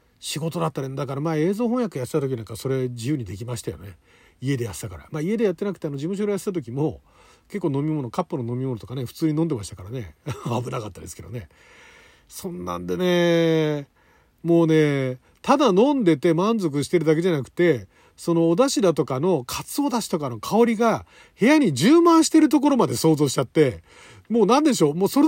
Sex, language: male, Japanese